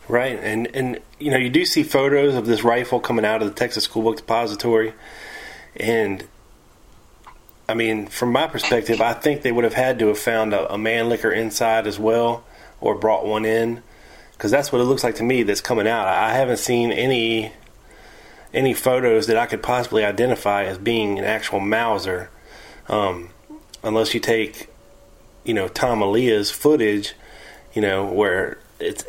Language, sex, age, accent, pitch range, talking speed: English, male, 30-49, American, 110-125 Hz, 180 wpm